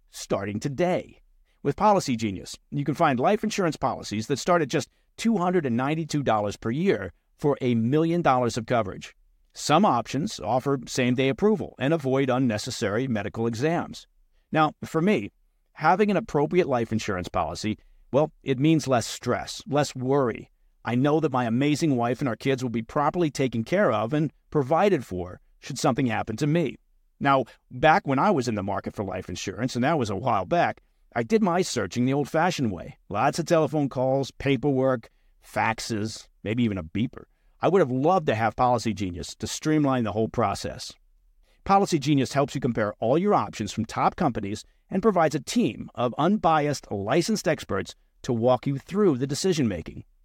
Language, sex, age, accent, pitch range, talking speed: English, male, 50-69, American, 110-155 Hz, 175 wpm